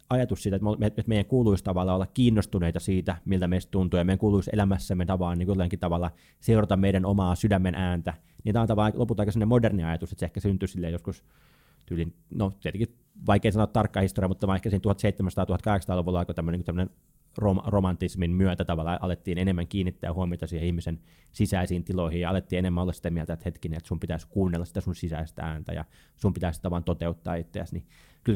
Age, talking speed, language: 20-39, 175 wpm, Finnish